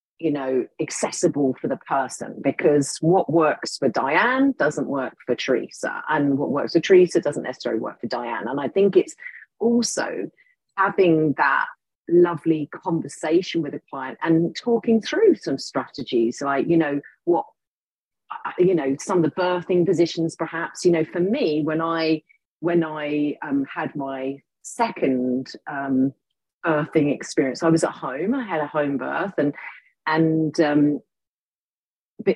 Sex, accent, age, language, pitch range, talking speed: female, British, 40-59, English, 145-180 Hz, 150 wpm